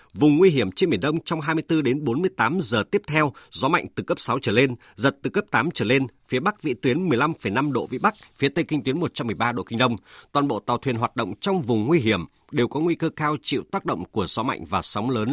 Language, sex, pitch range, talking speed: Vietnamese, male, 120-155 Hz, 260 wpm